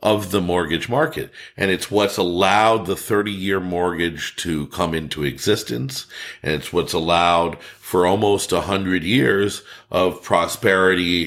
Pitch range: 85-105 Hz